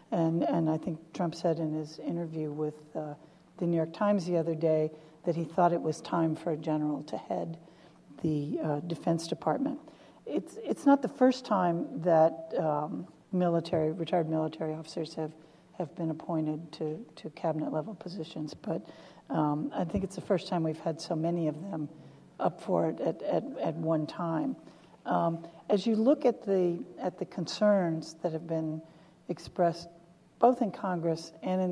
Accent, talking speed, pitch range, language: American, 180 wpm, 160-180 Hz, English